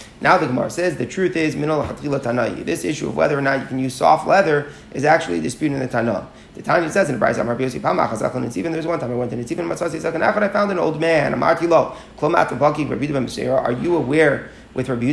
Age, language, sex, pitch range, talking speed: 30-49, English, male, 140-175 Hz, 260 wpm